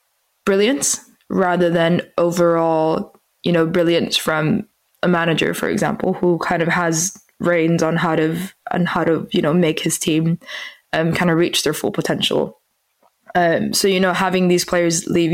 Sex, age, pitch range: female, 20-39, 170-185 Hz